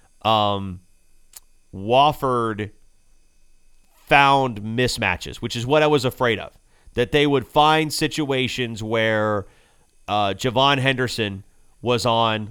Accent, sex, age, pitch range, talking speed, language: American, male, 30-49, 105-140 Hz, 105 wpm, English